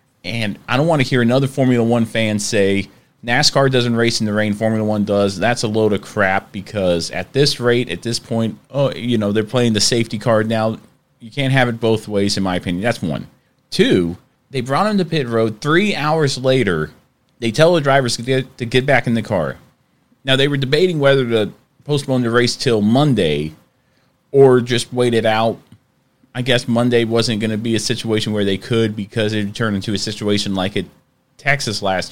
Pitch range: 105-135 Hz